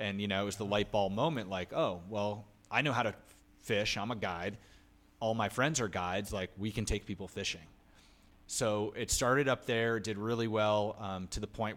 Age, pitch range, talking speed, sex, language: 30-49, 95-110 Hz, 220 wpm, male, English